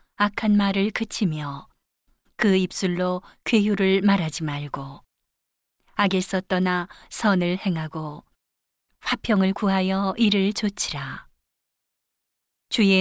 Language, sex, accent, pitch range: Korean, female, native, 180-205 Hz